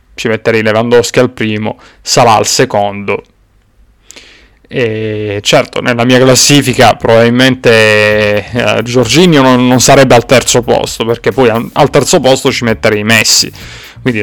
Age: 20-39